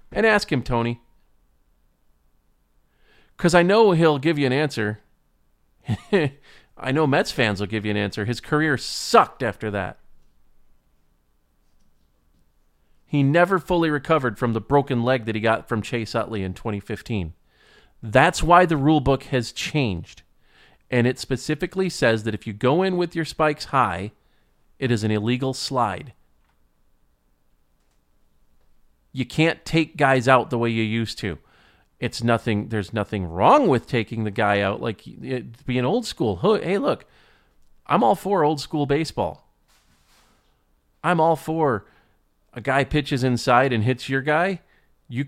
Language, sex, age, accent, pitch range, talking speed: English, male, 40-59, American, 100-145 Hz, 145 wpm